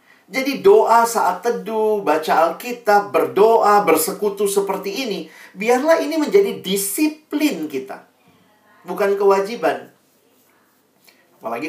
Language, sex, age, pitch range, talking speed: Indonesian, male, 40-59, 140-225 Hz, 90 wpm